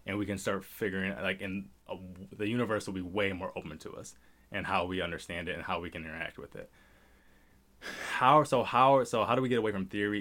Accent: American